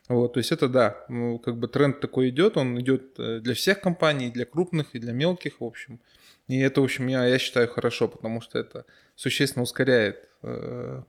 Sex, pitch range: male, 120-140 Hz